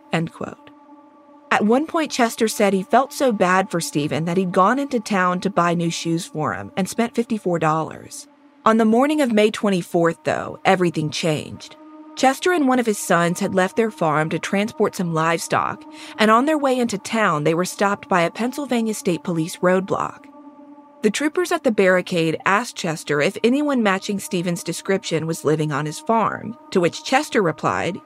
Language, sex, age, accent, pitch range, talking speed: English, female, 40-59, American, 175-260 Hz, 180 wpm